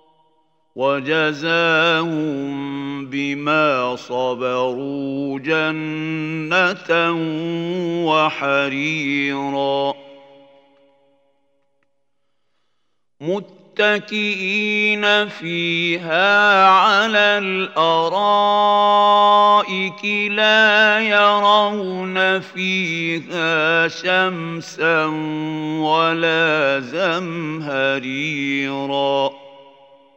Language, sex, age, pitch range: Arabic, male, 50-69, 140-200 Hz